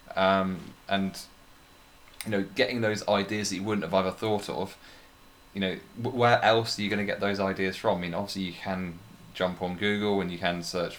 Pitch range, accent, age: 90-100 Hz, British, 20-39